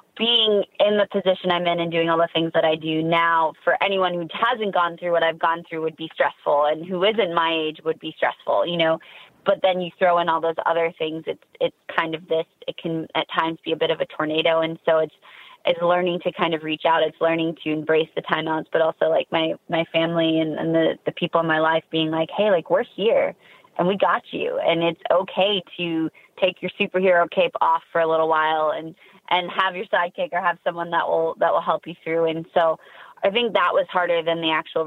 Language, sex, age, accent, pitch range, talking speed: English, female, 20-39, American, 160-185 Hz, 240 wpm